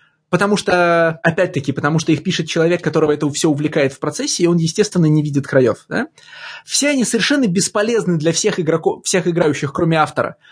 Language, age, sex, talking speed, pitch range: Russian, 20-39, male, 185 wpm, 155-200 Hz